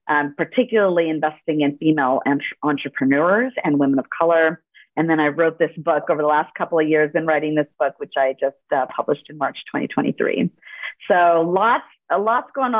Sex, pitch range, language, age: female, 160-200 Hz, English, 40-59